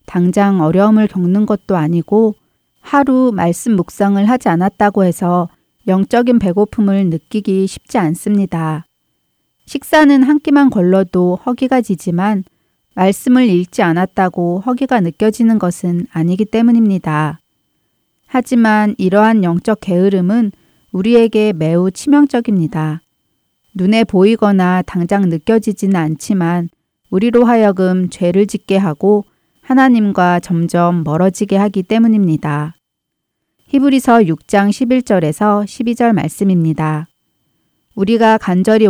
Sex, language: female, Korean